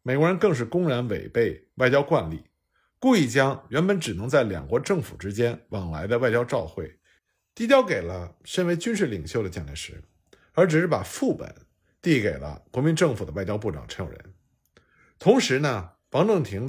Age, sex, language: 50-69, male, Chinese